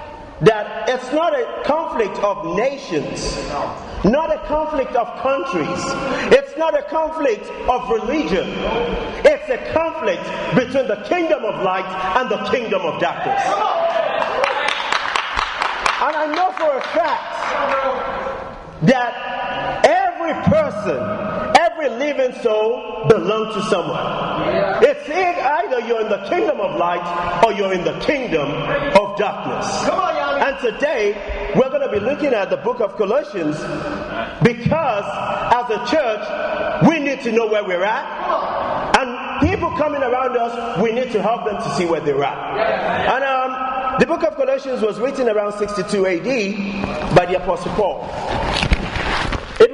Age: 40-59